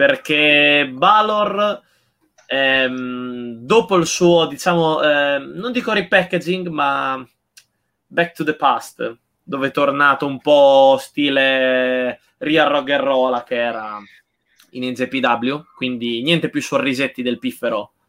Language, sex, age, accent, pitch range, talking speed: Italian, male, 20-39, native, 130-195 Hz, 120 wpm